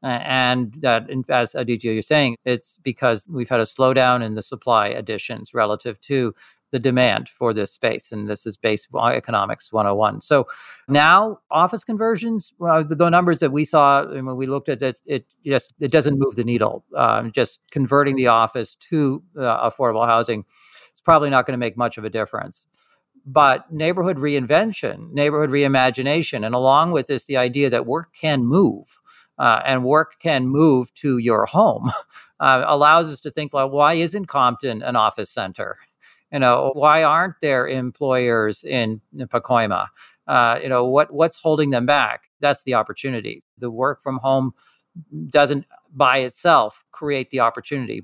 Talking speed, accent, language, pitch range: 165 wpm, American, English, 120-145 Hz